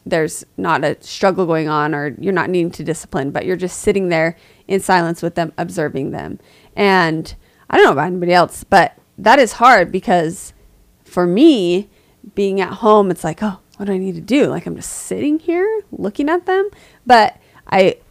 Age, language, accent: 30-49, English, American